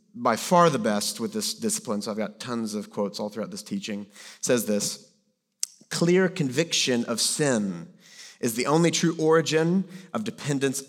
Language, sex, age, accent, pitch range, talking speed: English, male, 40-59, American, 105-175 Hz, 165 wpm